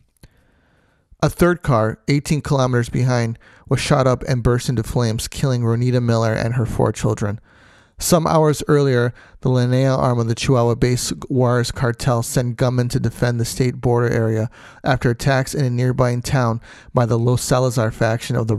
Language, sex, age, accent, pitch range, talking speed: English, male, 30-49, American, 115-130 Hz, 170 wpm